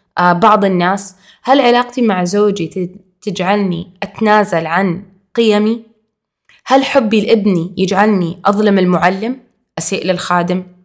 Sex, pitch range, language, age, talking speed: female, 180-215 Hz, Arabic, 20-39, 100 wpm